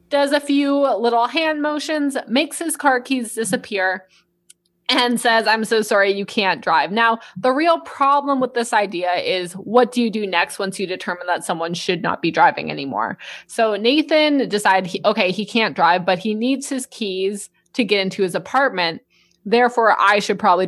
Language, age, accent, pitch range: English, 20-39, American, 190-250 Hz